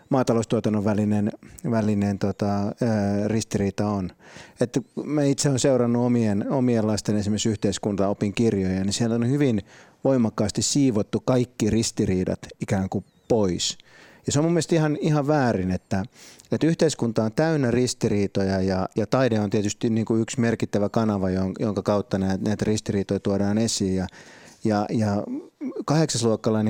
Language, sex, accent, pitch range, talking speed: Finnish, male, native, 100-120 Hz, 130 wpm